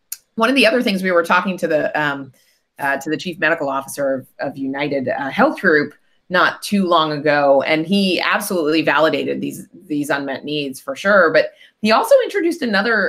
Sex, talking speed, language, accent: female, 195 wpm, English, American